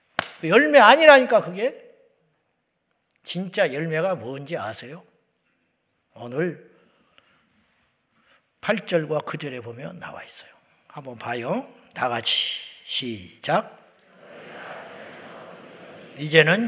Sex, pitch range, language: male, 150-225 Hz, Korean